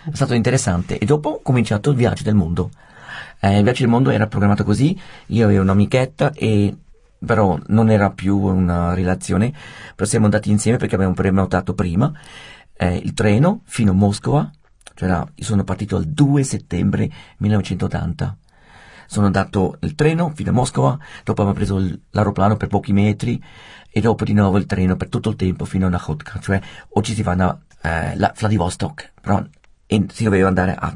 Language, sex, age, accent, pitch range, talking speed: Italian, male, 40-59, native, 95-115 Hz, 180 wpm